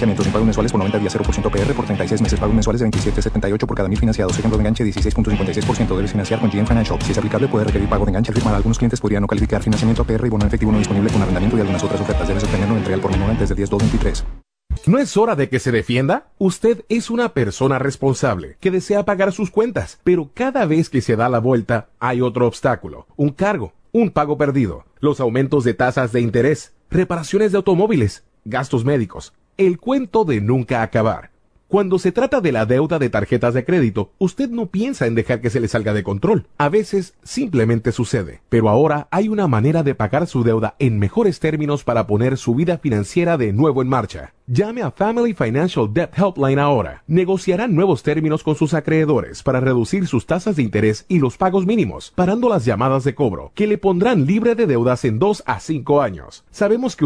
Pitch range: 110-165 Hz